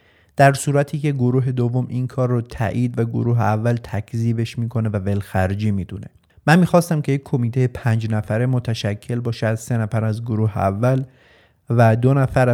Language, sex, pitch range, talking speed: Persian, male, 110-130 Hz, 170 wpm